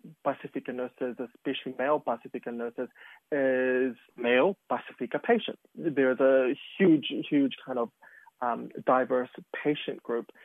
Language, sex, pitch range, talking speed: English, male, 125-150 Hz, 115 wpm